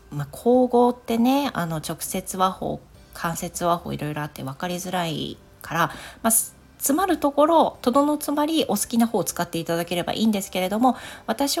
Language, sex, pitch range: Japanese, female, 165-230 Hz